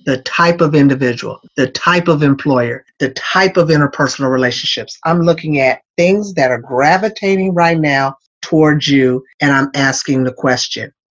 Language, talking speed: English, 155 wpm